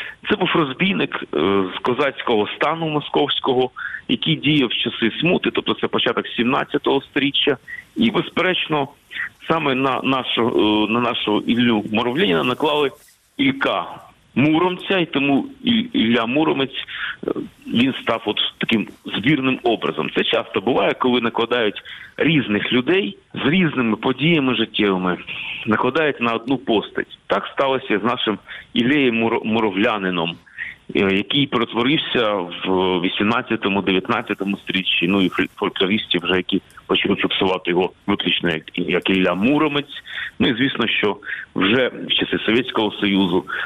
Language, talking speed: Ukrainian, 120 wpm